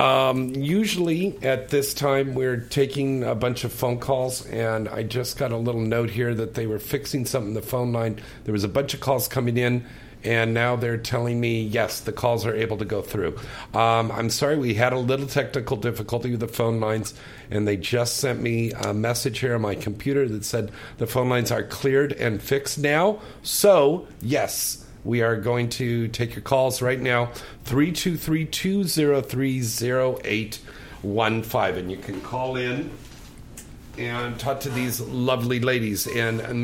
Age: 50-69